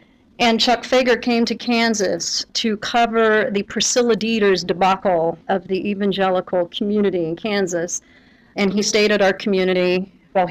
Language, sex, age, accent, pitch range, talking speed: English, female, 40-59, American, 180-225 Hz, 145 wpm